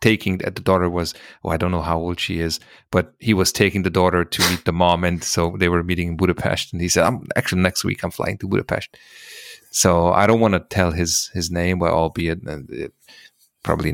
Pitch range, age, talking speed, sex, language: 85-105 Hz, 30-49, 235 wpm, male, English